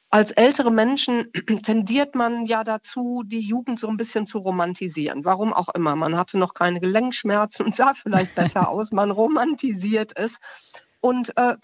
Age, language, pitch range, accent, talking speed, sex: 50-69, German, 200-235 Hz, German, 165 wpm, female